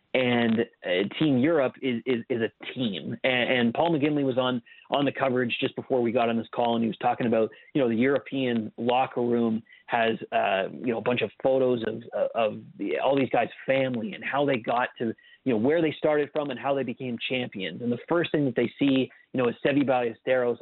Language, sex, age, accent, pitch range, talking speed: English, male, 30-49, American, 115-135 Hz, 230 wpm